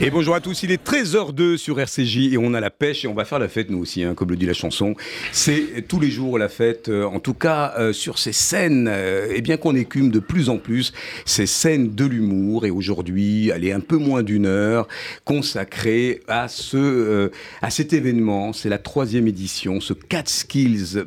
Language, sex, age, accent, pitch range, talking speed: French, male, 50-69, French, 95-125 Hz, 215 wpm